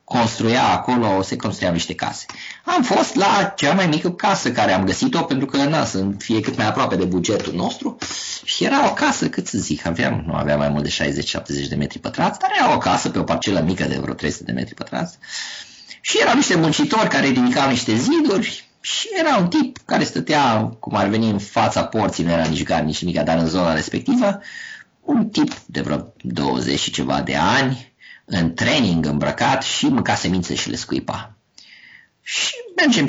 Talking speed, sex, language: 195 wpm, male, Romanian